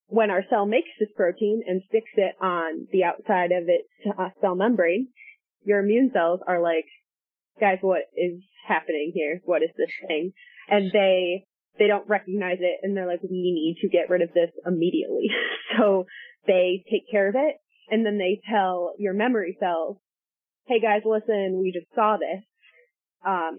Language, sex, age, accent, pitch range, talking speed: English, female, 20-39, American, 180-225 Hz, 175 wpm